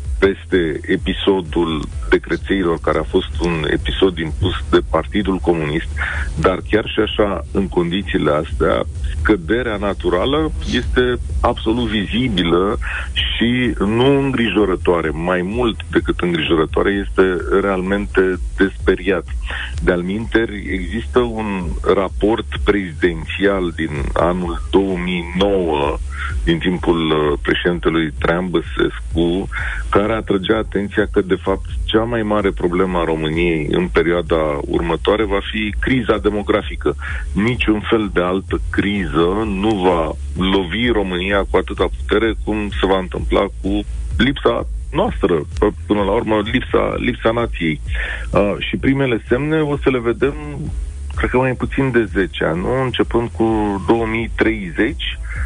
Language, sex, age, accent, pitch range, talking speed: Romanian, male, 40-59, native, 80-110 Hz, 115 wpm